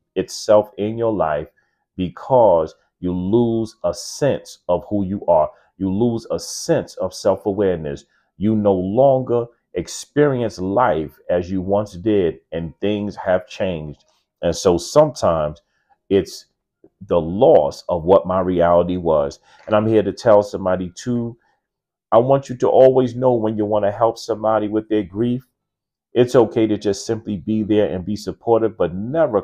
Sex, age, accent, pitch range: male, 40-59, American, 90-110 Hz